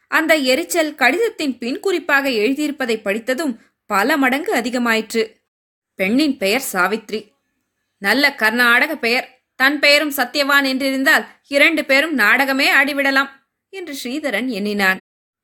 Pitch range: 230-290 Hz